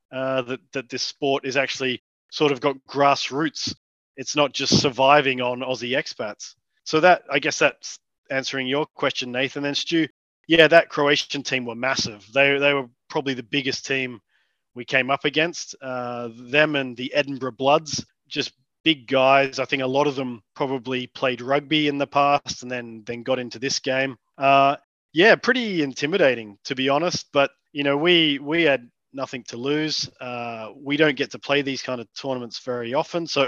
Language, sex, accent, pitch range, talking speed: English, male, Australian, 130-145 Hz, 185 wpm